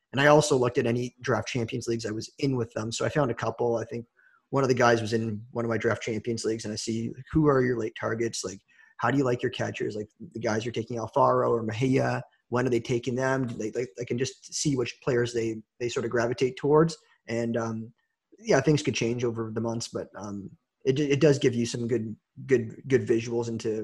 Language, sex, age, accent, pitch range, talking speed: English, male, 20-39, American, 115-130 Hz, 240 wpm